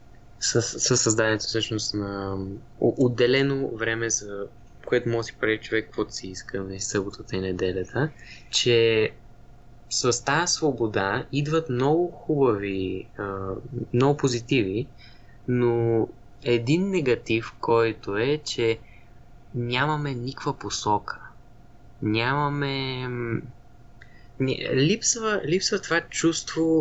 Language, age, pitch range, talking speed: Bulgarian, 20-39, 110-130 Hz, 90 wpm